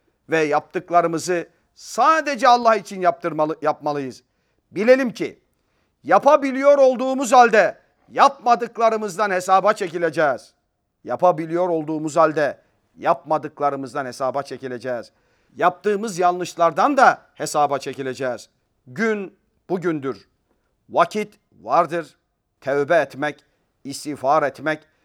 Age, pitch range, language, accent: 50-69, 145-220 Hz, Turkish, native